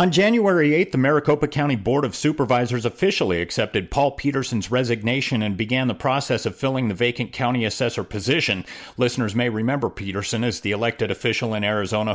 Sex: male